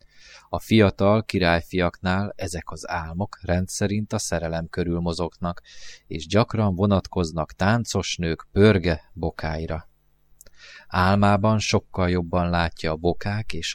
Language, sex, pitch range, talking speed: Hungarian, male, 85-105 Hz, 110 wpm